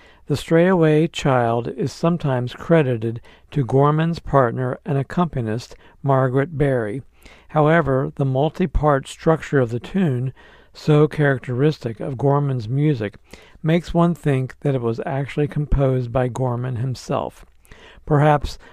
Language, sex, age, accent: English, male, 60-79, American